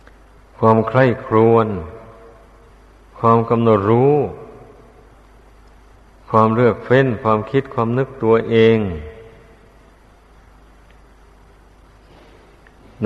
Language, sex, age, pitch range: Thai, male, 60-79, 105-120 Hz